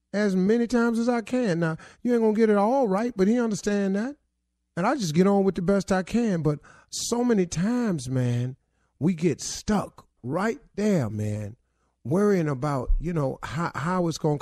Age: 40-59